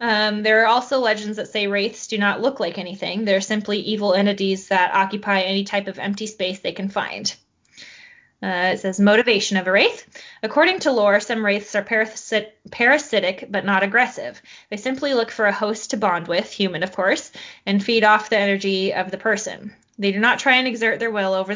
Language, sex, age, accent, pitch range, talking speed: English, female, 20-39, American, 195-225 Hz, 205 wpm